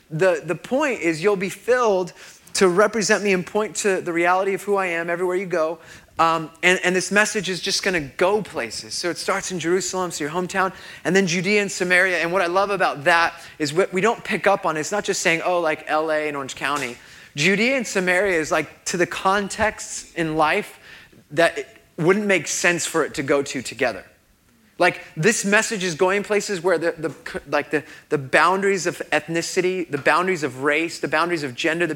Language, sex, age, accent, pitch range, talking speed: English, male, 20-39, American, 165-200 Hz, 215 wpm